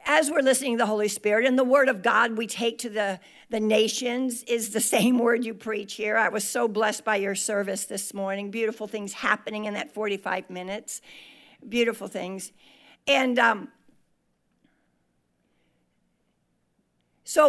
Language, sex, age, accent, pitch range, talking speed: English, female, 60-79, American, 215-280 Hz, 160 wpm